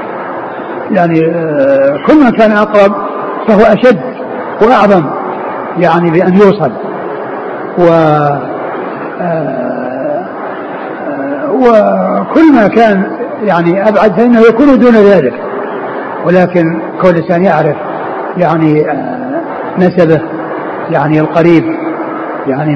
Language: Arabic